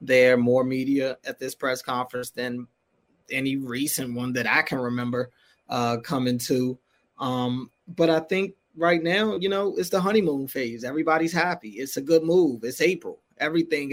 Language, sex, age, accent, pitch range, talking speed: English, male, 20-39, American, 140-170 Hz, 170 wpm